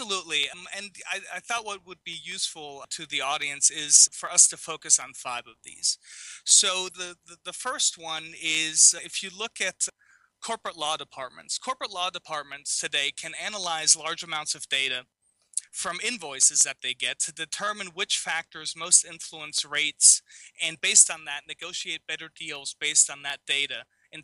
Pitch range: 150-180 Hz